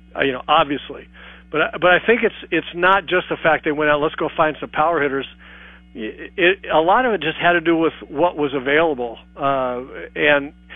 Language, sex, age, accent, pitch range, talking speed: English, male, 50-69, American, 130-155 Hz, 220 wpm